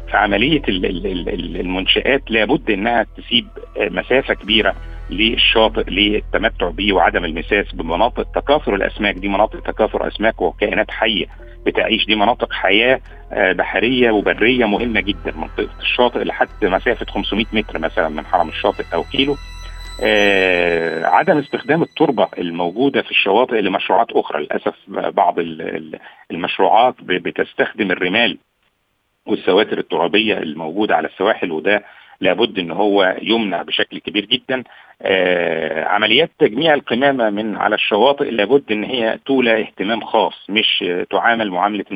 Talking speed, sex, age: 115 wpm, male, 50-69